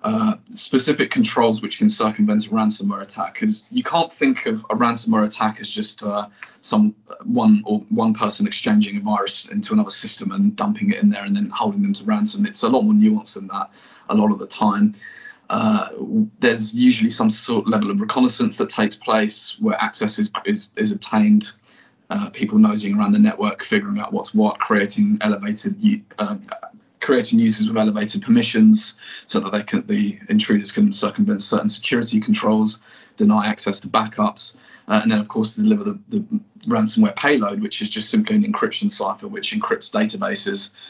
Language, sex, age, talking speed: English, male, 20-39, 185 wpm